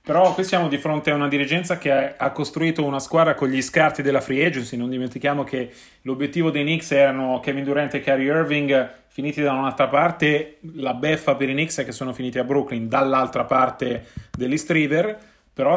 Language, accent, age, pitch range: Italian, native, 30-49, 135-160 Hz